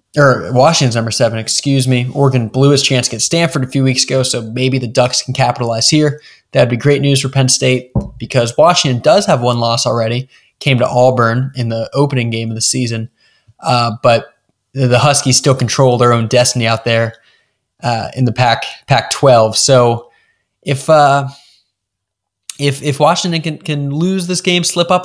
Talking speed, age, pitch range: 185 wpm, 20-39, 120-145 Hz